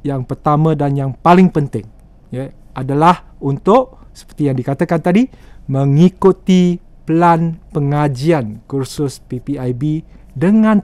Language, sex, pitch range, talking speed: Malay, male, 130-170 Hz, 105 wpm